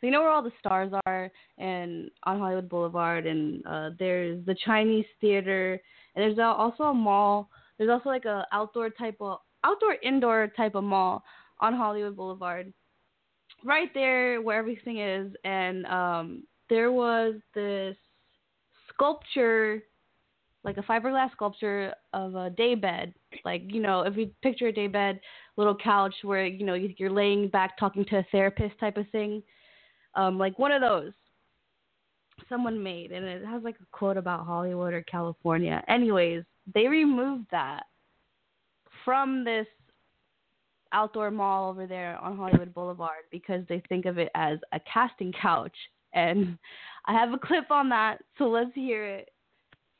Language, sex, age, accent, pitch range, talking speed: English, female, 20-39, American, 185-230 Hz, 155 wpm